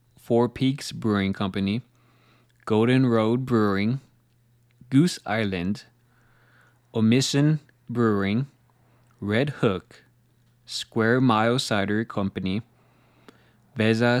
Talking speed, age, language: 75 wpm, 20-39, English